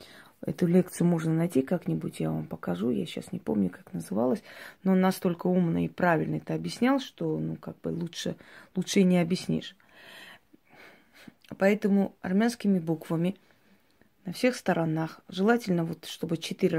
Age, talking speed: 30-49, 145 wpm